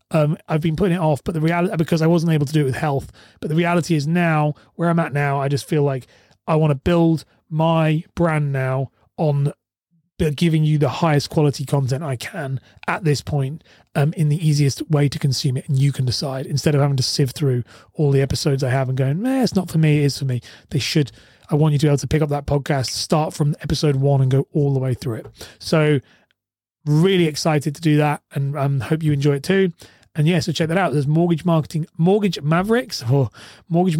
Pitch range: 140-165 Hz